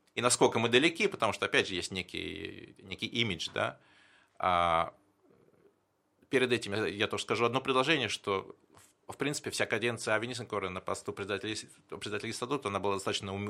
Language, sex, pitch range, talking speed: Russian, male, 95-135 Hz, 155 wpm